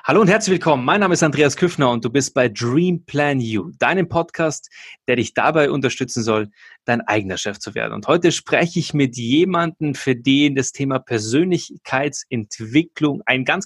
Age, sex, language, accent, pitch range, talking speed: 30-49, male, German, German, 130-175 Hz, 180 wpm